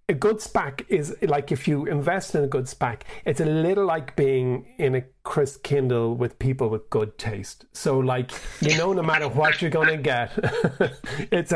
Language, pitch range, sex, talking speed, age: English, 120-155 Hz, male, 195 wpm, 40-59